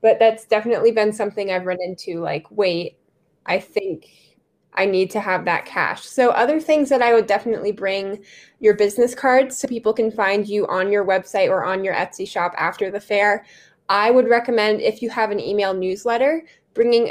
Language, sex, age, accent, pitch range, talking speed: English, female, 10-29, American, 195-240 Hz, 195 wpm